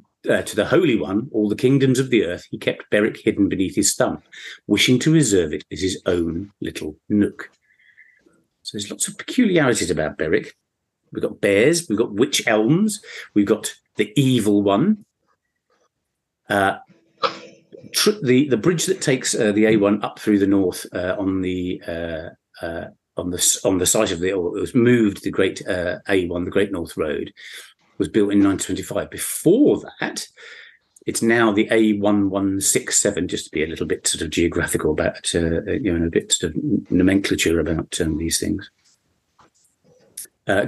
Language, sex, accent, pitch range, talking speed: English, male, British, 100-135 Hz, 170 wpm